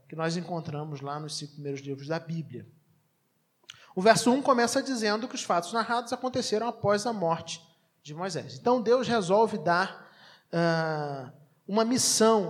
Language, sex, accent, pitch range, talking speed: Portuguese, male, Brazilian, 165-220 Hz, 155 wpm